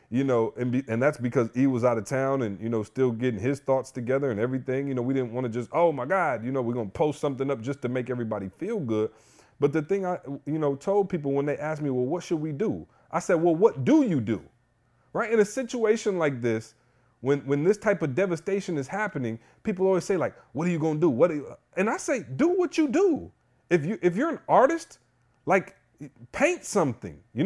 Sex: male